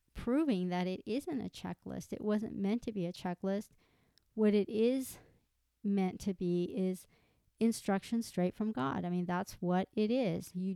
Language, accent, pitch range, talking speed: English, American, 180-210 Hz, 175 wpm